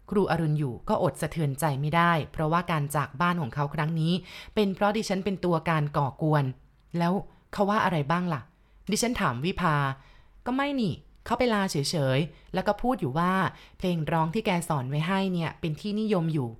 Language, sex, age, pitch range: Thai, female, 20-39, 155-190 Hz